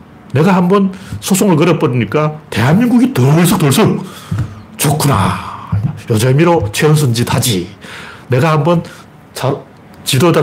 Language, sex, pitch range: Korean, male, 120-170 Hz